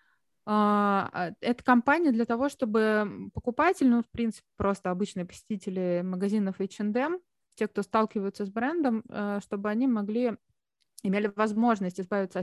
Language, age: Russian, 20-39